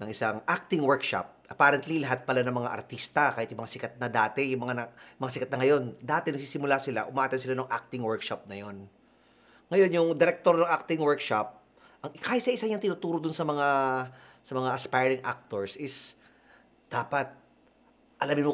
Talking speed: 185 wpm